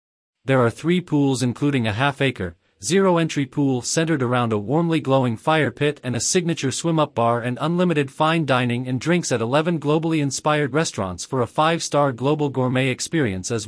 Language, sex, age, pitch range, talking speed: English, male, 40-59, 125-150 Hz, 170 wpm